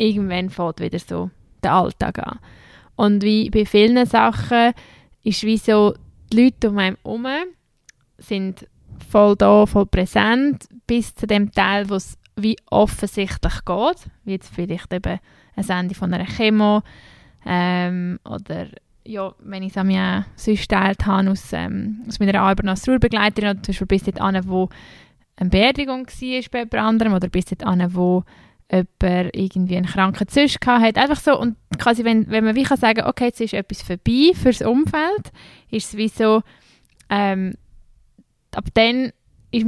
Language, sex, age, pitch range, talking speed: German, female, 10-29, 190-225 Hz, 160 wpm